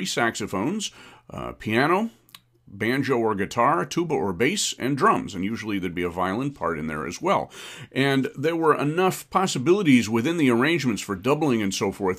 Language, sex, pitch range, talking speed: English, male, 95-130 Hz, 170 wpm